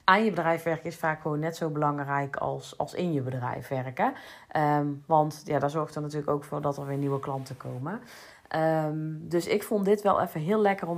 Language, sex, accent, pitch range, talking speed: Dutch, female, Dutch, 150-180 Hz, 225 wpm